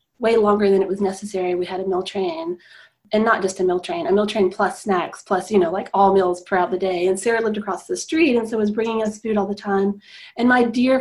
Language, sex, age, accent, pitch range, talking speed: English, female, 30-49, American, 190-235 Hz, 265 wpm